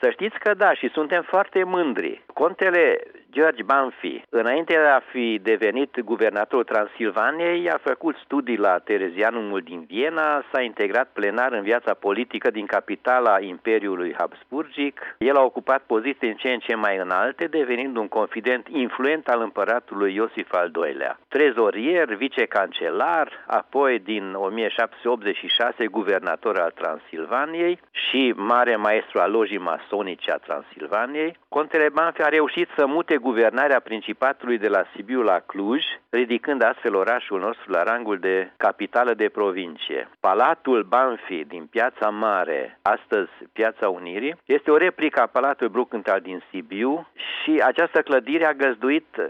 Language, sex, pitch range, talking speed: Romanian, male, 115-155 Hz, 135 wpm